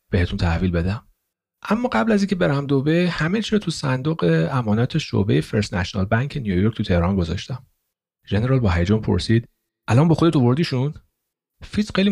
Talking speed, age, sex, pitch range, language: 155 wpm, 40-59, male, 100-155 Hz, Persian